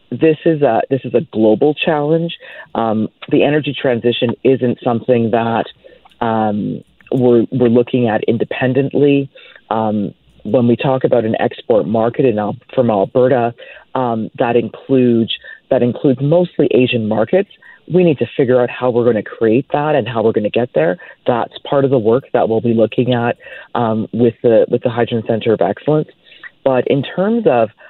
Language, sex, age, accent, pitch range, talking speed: English, female, 40-59, American, 115-145 Hz, 175 wpm